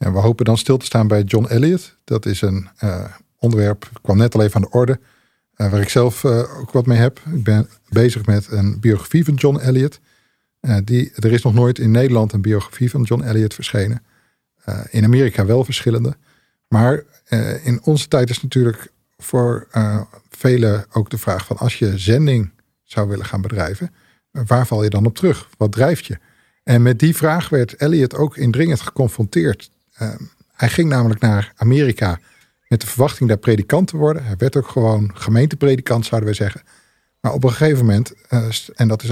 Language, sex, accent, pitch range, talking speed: Dutch, male, Dutch, 105-125 Hz, 200 wpm